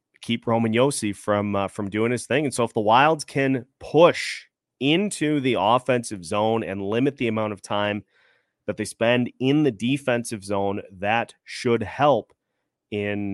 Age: 30-49